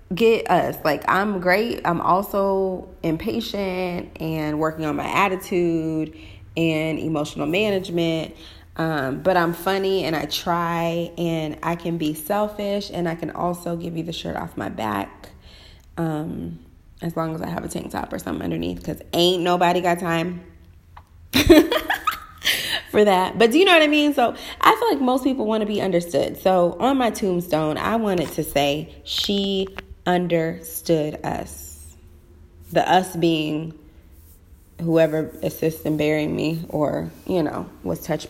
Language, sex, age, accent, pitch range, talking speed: English, female, 30-49, American, 145-185 Hz, 155 wpm